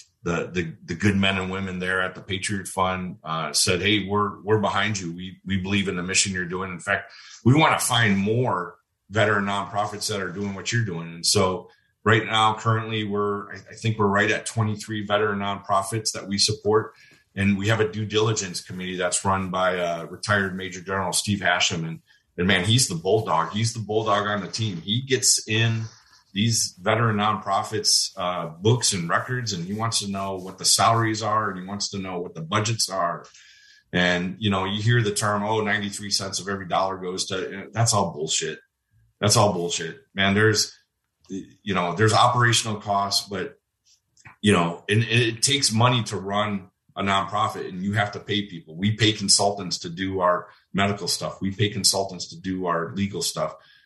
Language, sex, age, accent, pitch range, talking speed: English, male, 30-49, American, 95-110 Hz, 195 wpm